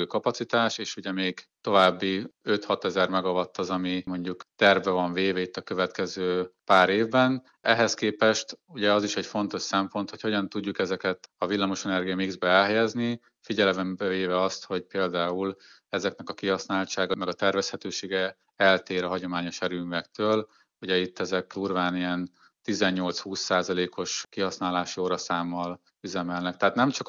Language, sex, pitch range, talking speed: Hungarian, male, 90-105 Hz, 135 wpm